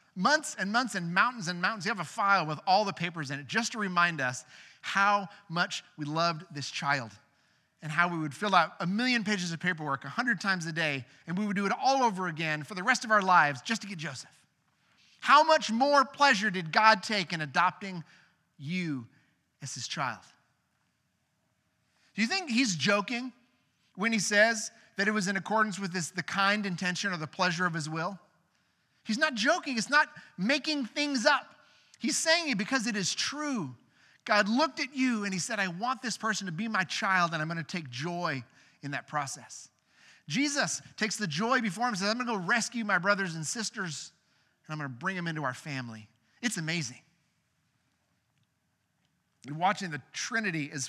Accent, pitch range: American, 155-220 Hz